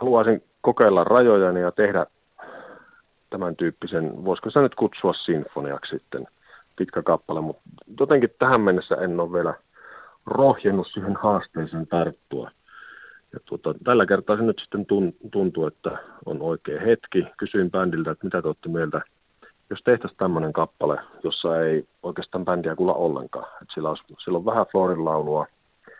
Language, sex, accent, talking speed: Finnish, male, native, 140 wpm